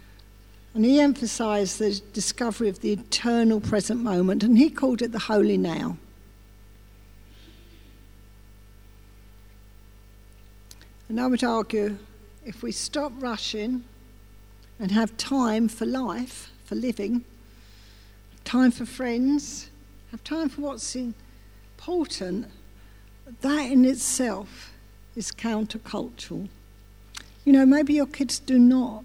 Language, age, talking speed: English, 60-79, 105 wpm